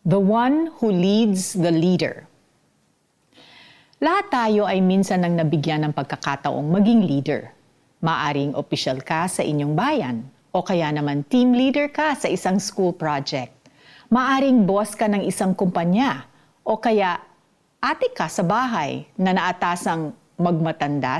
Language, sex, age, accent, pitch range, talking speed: Filipino, female, 50-69, native, 155-225 Hz, 135 wpm